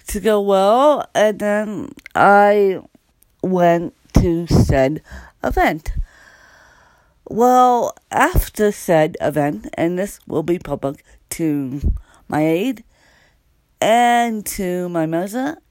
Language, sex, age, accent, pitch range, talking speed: English, female, 50-69, American, 155-220 Hz, 100 wpm